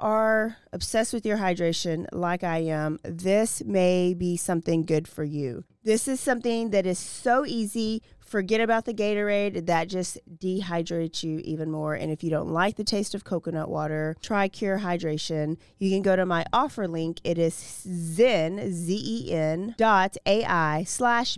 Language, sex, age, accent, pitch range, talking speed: English, female, 30-49, American, 175-235 Hz, 155 wpm